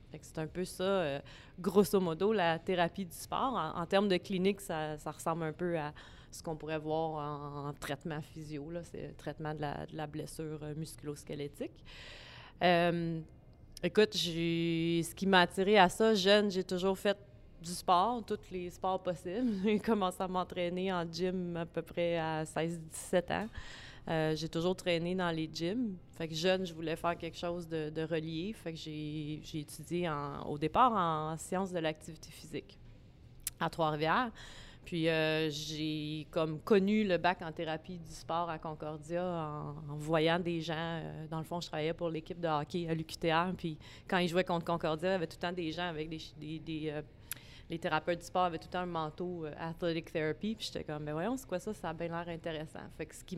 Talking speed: 205 wpm